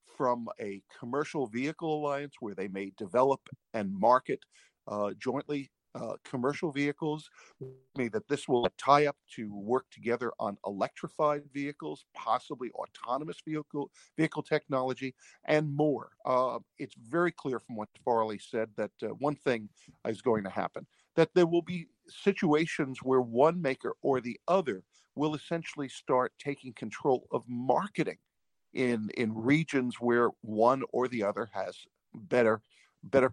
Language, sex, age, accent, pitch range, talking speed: English, male, 50-69, American, 115-150 Hz, 140 wpm